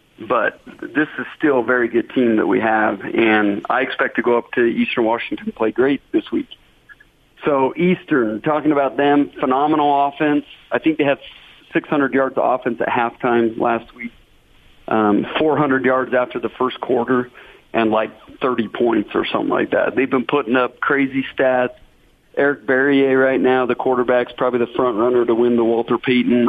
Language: English